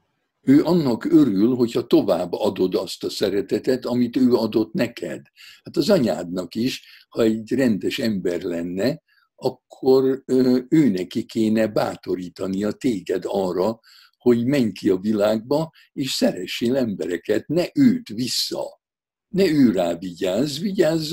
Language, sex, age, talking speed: Hungarian, male, 60-79, 130 wpm